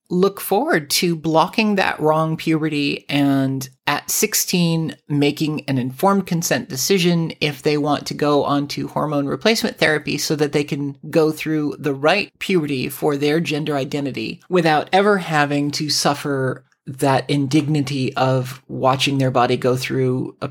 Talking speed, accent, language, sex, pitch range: 150 wpm, American, English, male, 140-180 Hz